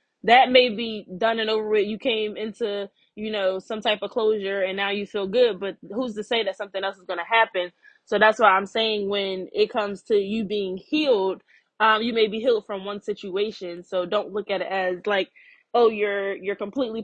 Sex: female